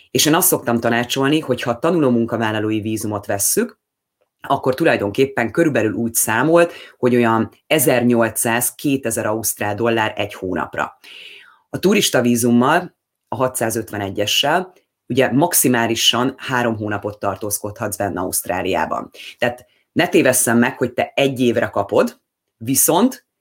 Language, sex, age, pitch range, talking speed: Hungarian, female, 30-49, 110-130 Hz, 115 wpm